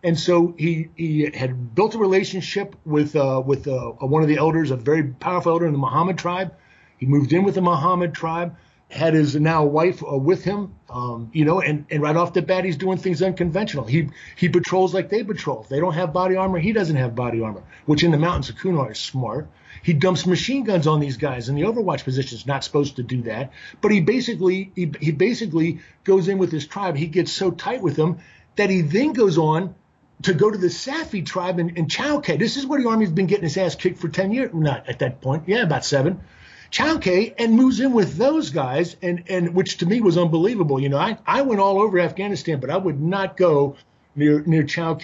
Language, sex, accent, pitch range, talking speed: English, male, American, 145-190 Hz, 235 wpm